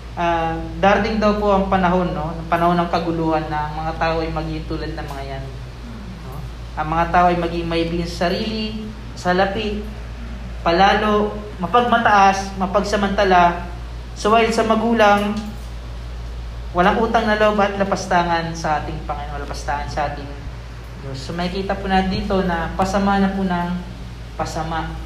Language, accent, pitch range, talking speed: Filipino, native, 145-180 Hz, 150 wpm